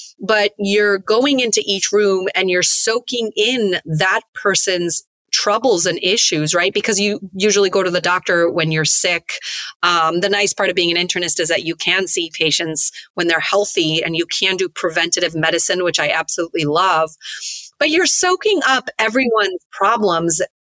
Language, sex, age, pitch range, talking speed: English, female, 30-49, 175-215 Hz, 170 wpm